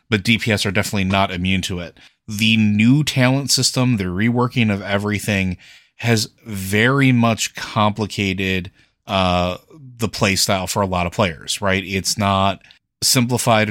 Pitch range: 95-110 Hz